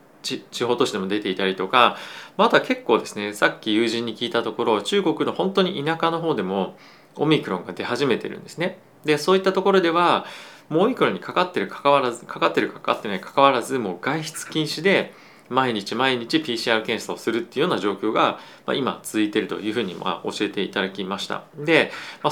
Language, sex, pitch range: Japanese, male, 105-170 Hz